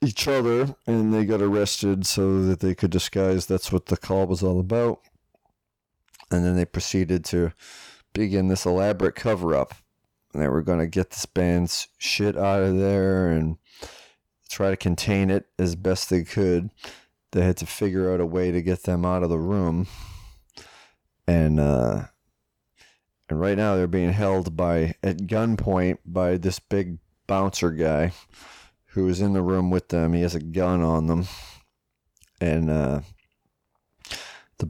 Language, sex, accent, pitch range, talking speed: English, male, American, 85-100 Hz, 165 wpm